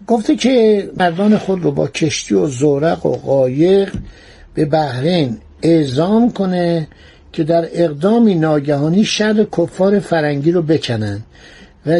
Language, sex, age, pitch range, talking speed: Persian, male, 60-79, 145-195 Hz, 125 wpm